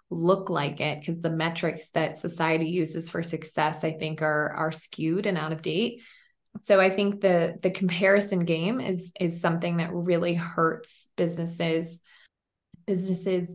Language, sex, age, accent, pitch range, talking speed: English, female, 20-39, American, 175-195 Hz, 155 wpm